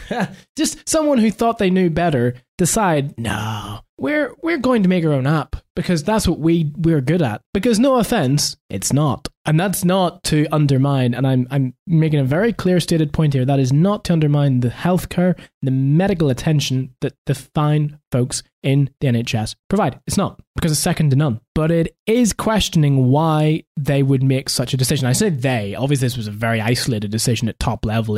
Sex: male